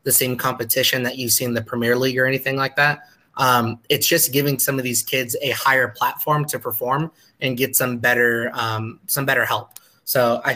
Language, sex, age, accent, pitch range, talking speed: English, male, 20-39, American, 120-135 Hz, 210 wpm